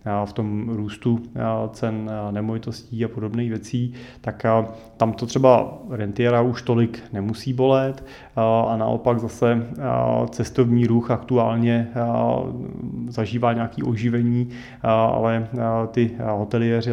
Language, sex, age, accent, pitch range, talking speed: Czech, male, 30-49, native, 115-125 Hz, 105 wpm